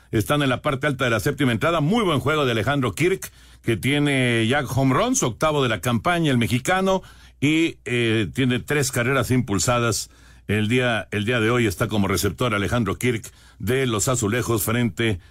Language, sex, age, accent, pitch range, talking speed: Spanish, male, 60-79, Mexican, 115-165 Hz, 180 wpm